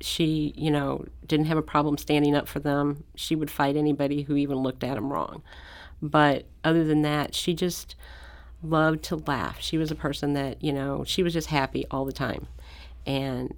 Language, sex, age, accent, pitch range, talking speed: English, female, 40-59, American, 130-150 Hz, 200 wpm